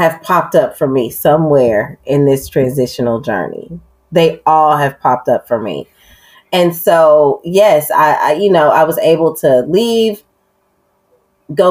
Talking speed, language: 155 wpm, English